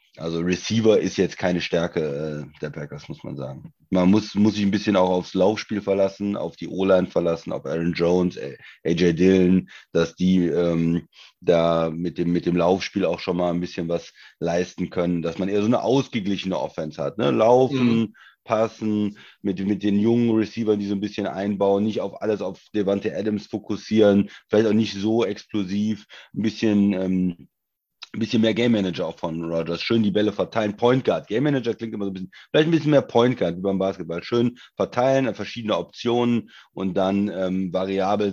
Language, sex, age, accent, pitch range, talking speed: German, male, 30-49, German, 90-110 Hz, 185 wpm